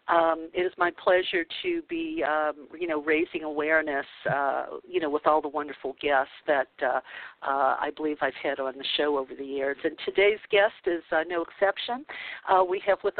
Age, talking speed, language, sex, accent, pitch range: 50-69, 200 wpm, English, female, American, 150-185 Hz